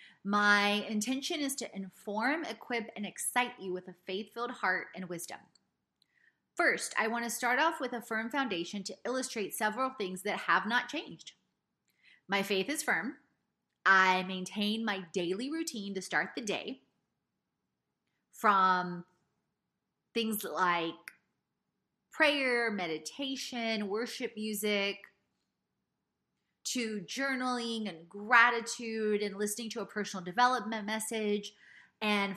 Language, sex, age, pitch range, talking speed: English, female, 30-49, 190-240 Hz, 120 wpm